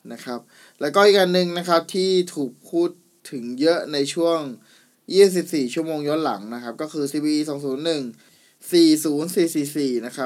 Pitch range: 130-165 Hz